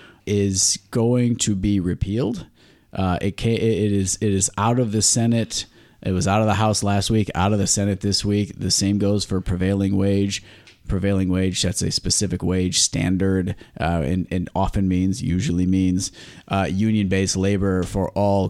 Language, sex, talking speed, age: English, male, 180 wpm, 30-49